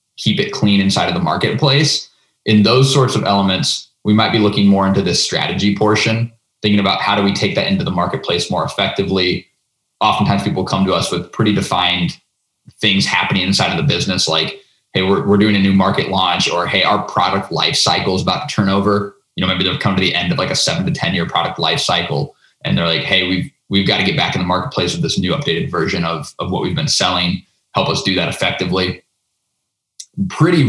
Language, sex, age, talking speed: English, male, 20-39, 225 wpm